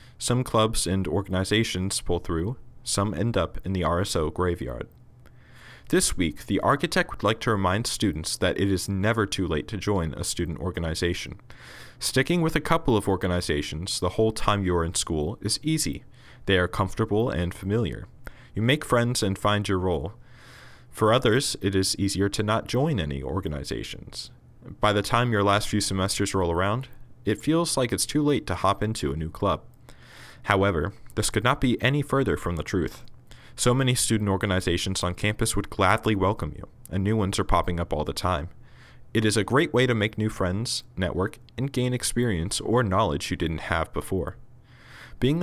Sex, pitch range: male, 95-120 Hz